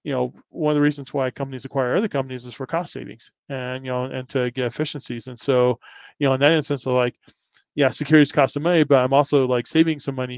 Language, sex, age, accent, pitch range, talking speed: English, male, 20-39, American, 125-140 Hz, 250 wpm